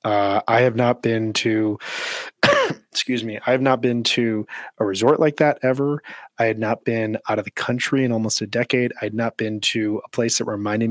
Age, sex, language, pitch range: 30-49, male, English, 105-120 Hz